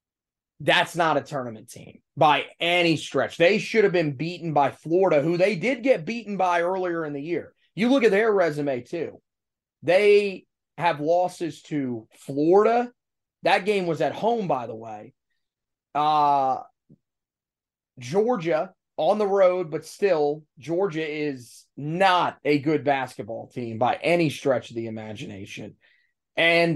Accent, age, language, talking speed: American, 30-49, English, 145 wpm